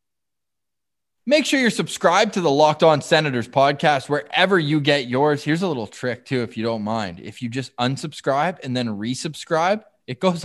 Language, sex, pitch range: English, male, 125-165 Hz